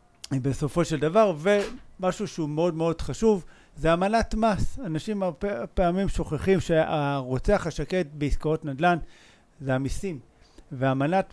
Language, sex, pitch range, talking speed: Hebrew, male, 135-170 Hz, 115 wpm